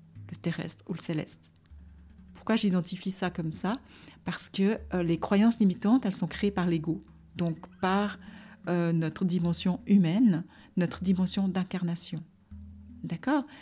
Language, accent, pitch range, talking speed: French, French, 165-205 Hz, 135 wpm